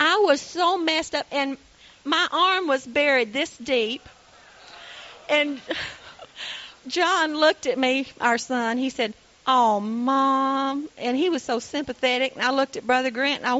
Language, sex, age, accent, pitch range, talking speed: English, female, 40-59, American, 220-290 Hz, 160 wpm